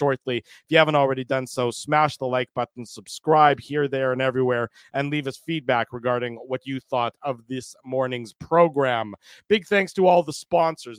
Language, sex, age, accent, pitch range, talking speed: English, male, 40-59, American, 130-170 Hz, 185 wpm